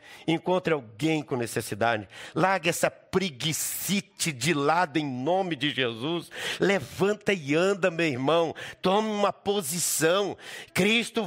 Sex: male